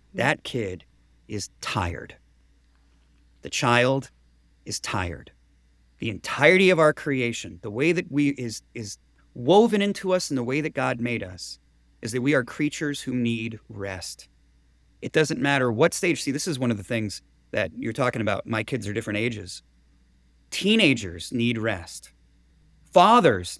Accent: American